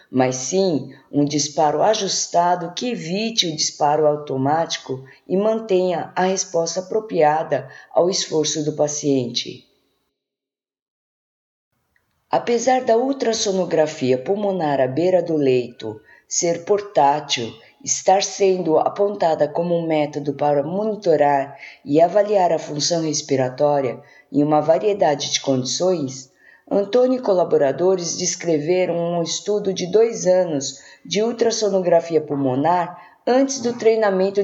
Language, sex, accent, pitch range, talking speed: Portuguese, female, Brazilian, 150-200 Hz, 110 wpm